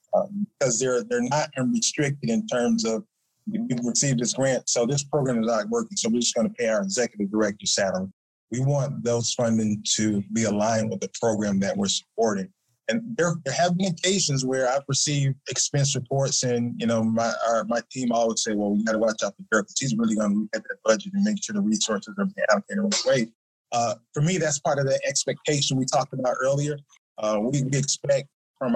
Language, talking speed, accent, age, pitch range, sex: English, 220 wpm, American, 20-39, 115-170 Hz, male